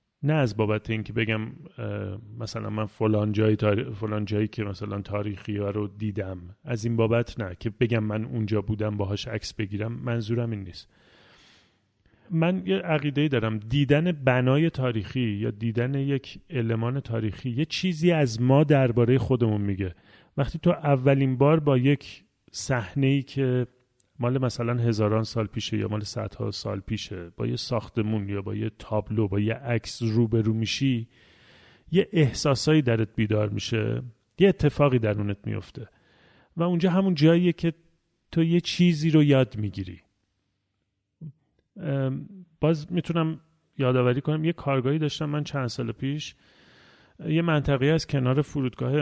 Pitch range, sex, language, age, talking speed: 105-140 Hz, male, Persian, 30-49, 145 wpm